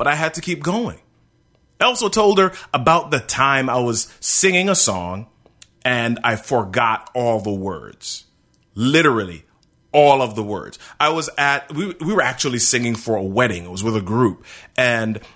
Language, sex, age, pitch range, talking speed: English, male, 30-49, 105-140 Hz, 180 wpm